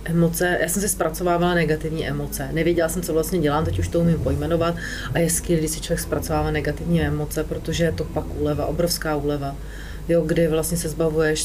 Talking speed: 200 wpm